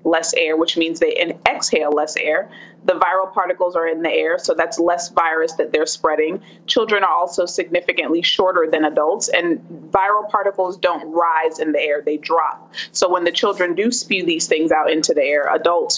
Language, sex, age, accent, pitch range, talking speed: English, female, 30-49, American, 170-245 Hz, 195 wpm